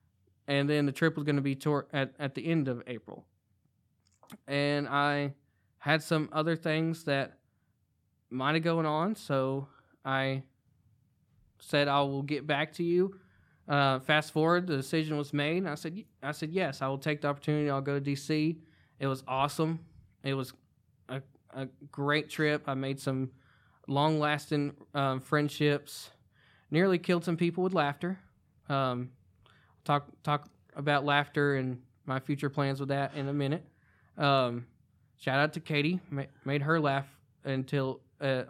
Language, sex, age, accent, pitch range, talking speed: English, male, 20-39, American, 135-160 Hz, 160 wpm